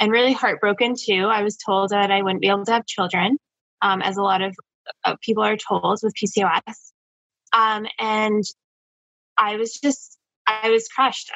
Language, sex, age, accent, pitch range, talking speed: English, female, 10-29, American, 185-210 Hz, 170 wpm